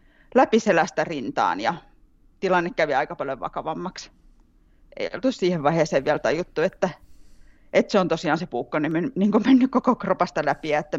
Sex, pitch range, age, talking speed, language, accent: female, 155-190 Hz, 30-49, 165 wpm, Finnish, native